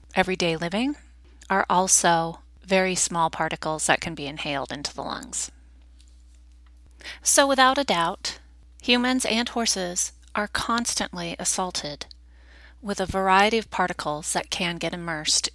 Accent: American